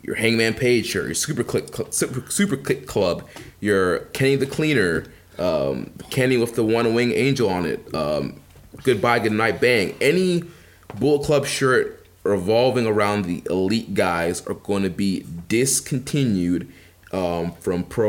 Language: English